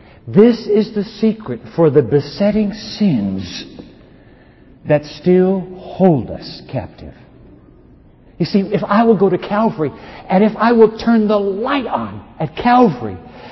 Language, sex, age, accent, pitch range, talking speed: English, male, 50-69, American, 145-225 Hz, 140 wpm